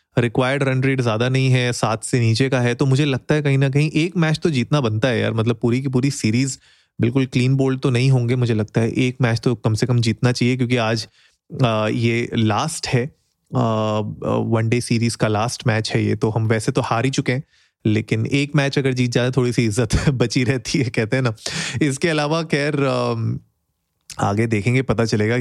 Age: 30-49